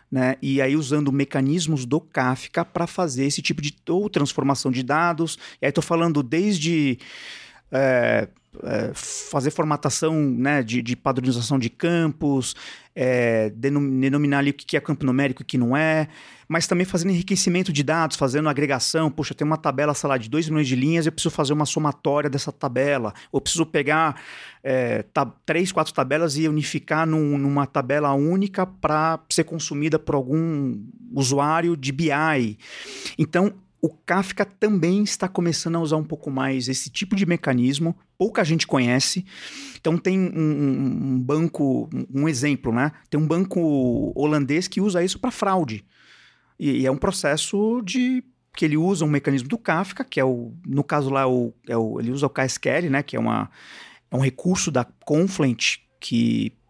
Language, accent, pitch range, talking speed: Portuguese, Brazilian, 135-170 Hz, 175 wpm